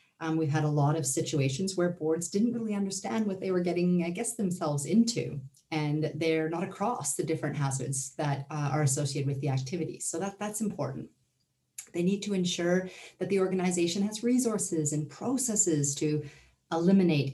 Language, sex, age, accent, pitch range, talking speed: English, female, 40-59, American, 145-185 Hz, 175 wpm